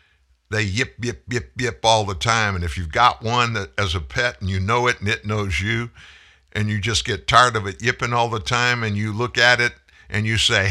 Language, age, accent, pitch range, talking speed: English, 60-79, American, 85-115 Hz, 240 wpm